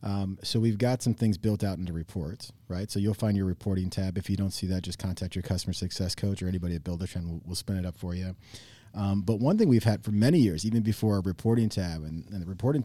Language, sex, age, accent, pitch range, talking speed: English, male, 30-49, American, 95-115 Hz, 265 wpm